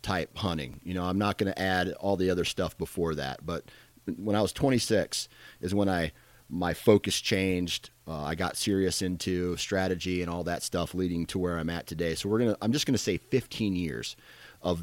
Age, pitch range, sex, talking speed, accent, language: 30-49, 85-105 Hz, male, 210 wpm, American, English